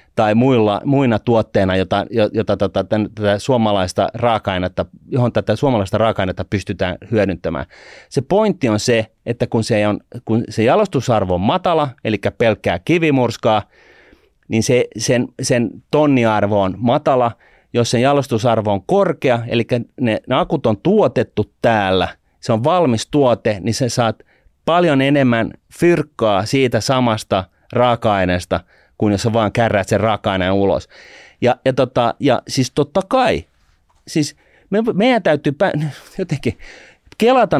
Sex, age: male, 30-49